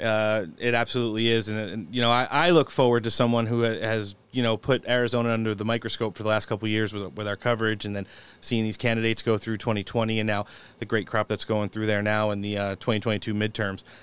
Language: English